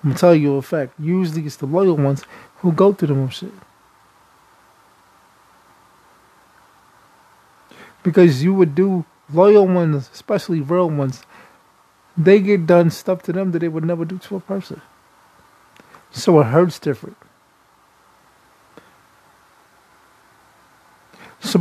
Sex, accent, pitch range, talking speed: male, American, 155-180 Hz, 125 wpm